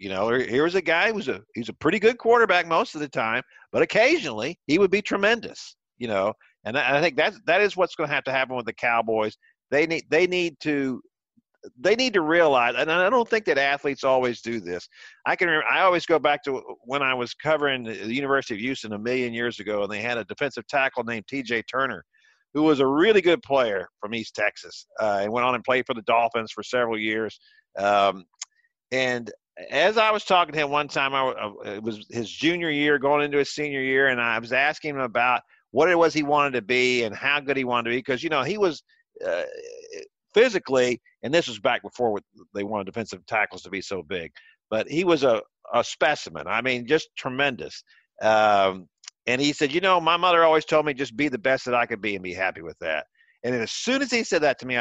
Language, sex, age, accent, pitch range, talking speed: English, male, 50-69, American, 120-170 Hz, 235 wpm